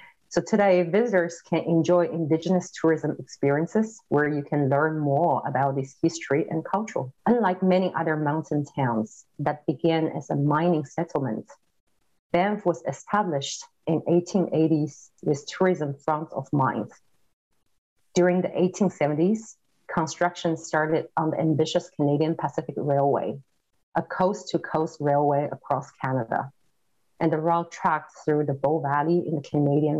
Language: English